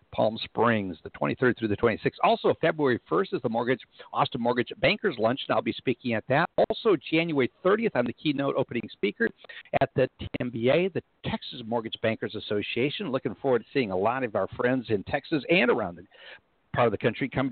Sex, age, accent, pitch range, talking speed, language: male, 60-79, American, 110-135 Hz, 200 wpm, English